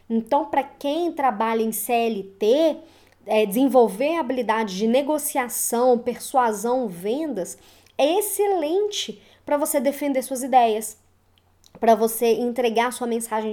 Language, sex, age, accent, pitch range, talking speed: Portuguese, male, 20-39, Brazilian, 220-285 Hz, 110 wpm